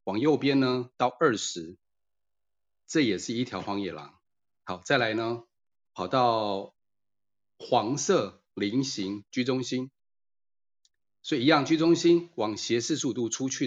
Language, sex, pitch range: Chinese, male, 95-130 Hz